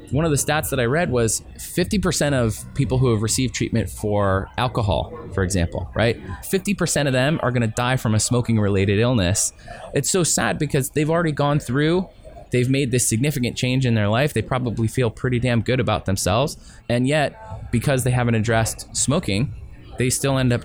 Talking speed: 195 wpm